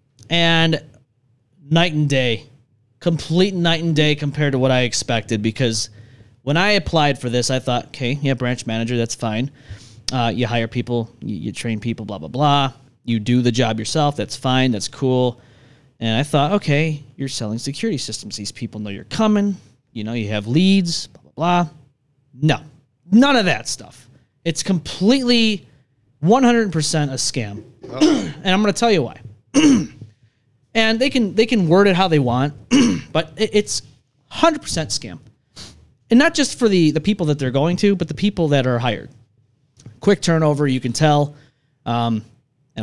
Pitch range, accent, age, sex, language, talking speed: 120-170 Hz, American, 20-39, male, English, 170 wpm